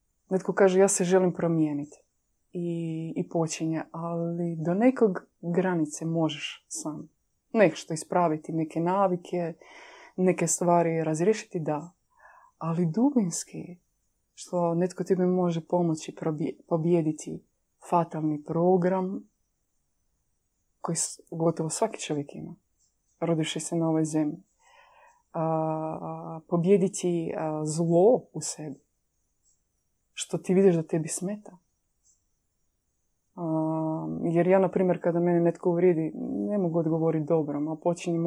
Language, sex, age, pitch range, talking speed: Croatian, female, 20-39, 160-195 Hz, 110 wpm